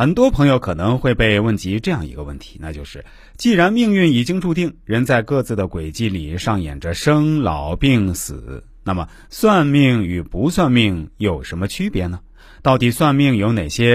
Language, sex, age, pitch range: Chinese, male, 30-49, 95-145 Hz